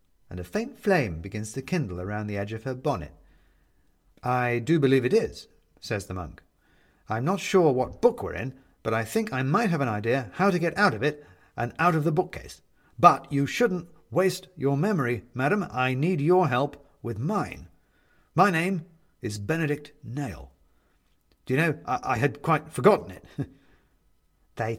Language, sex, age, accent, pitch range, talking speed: English, male, 50-69, British, 95-150 Hz, 180 wpm